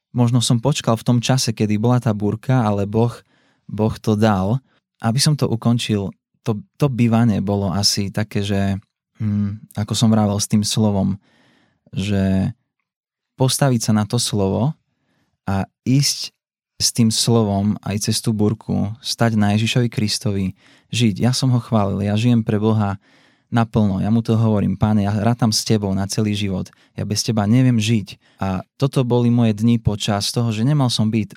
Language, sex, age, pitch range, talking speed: Slovak, male, 20-39, 100-120 Hz, 170 wpm